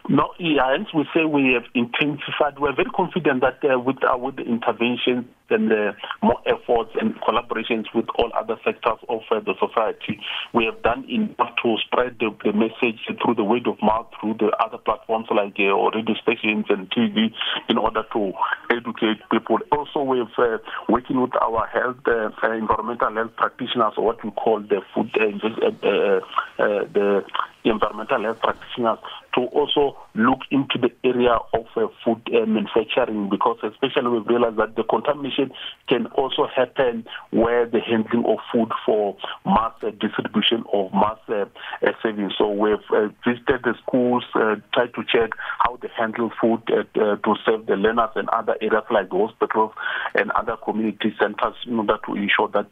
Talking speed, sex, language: 175 wpm, male, English